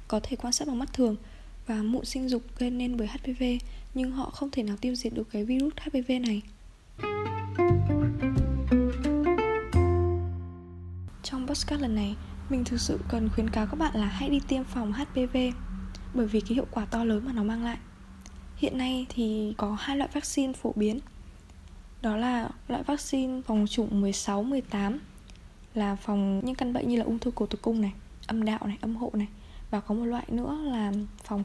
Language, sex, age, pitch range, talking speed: Vietnamese, female, 10-29, 210-255 Hz, 185 wpm